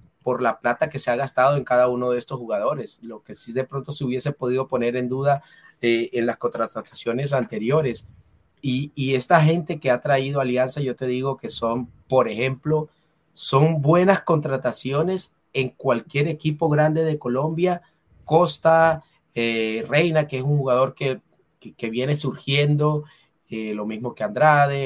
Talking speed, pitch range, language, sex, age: 170 wpm, 120-155 Hz, Spanish, male, 30-49